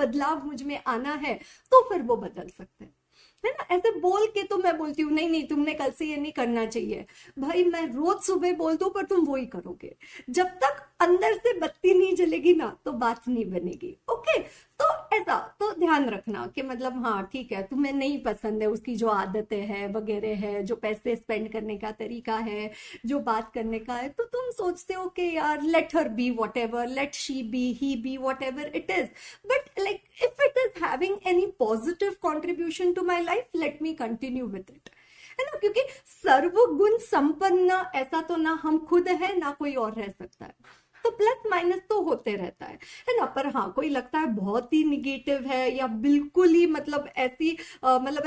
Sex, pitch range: female, 245-360 Hz